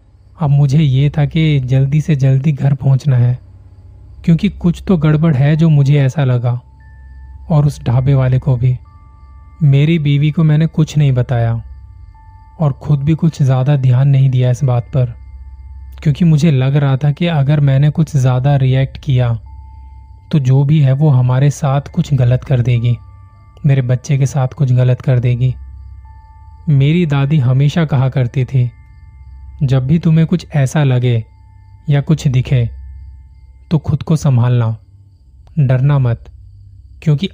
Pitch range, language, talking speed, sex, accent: 115-145 Hz, Hindi, 155 wpm, male, native